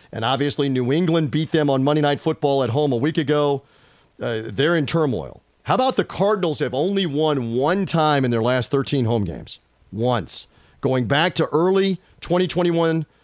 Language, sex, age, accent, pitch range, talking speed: English, male, 40-59, American, 135-185 Hz, 180 wpm